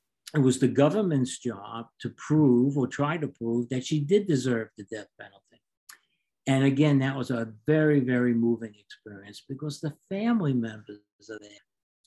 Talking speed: 165 wpm